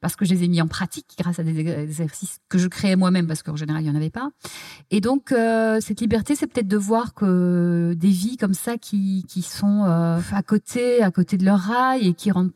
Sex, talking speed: female, 250 wpm